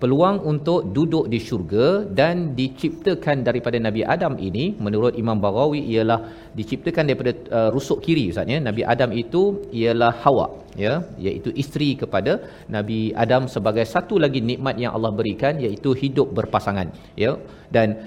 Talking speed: 150 wpm